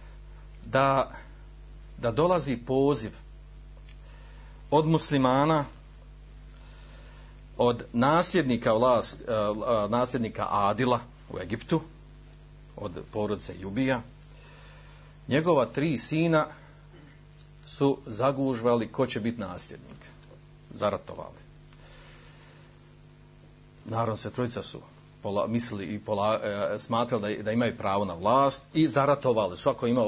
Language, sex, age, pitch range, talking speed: Croatian, male, 50-69, 115-150 Hz, 90 wpm